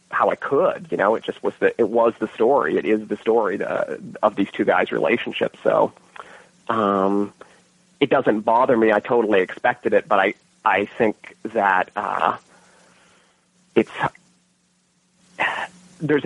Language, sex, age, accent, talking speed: English, male, 30-49, American, 150 wpm